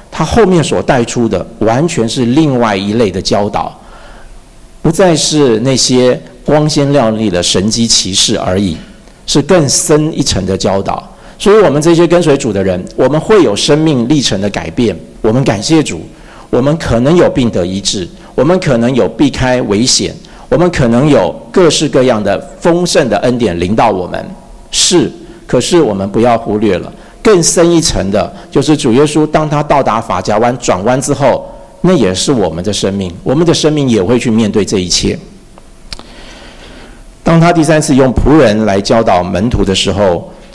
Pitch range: 110-155 Hz